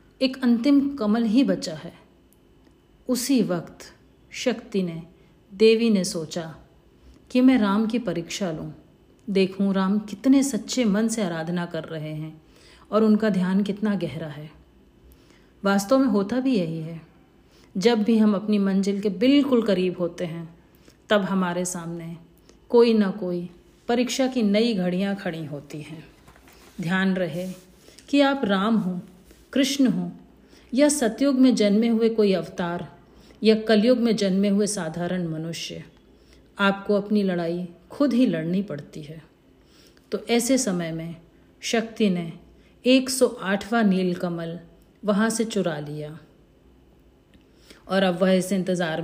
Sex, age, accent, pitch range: female, 50-69, native, 170-225 Hz